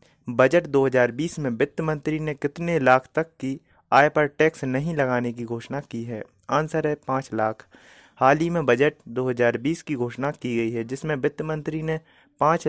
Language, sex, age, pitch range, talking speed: Hindi, male, 30-49, 125-155 Hz, 180 wpm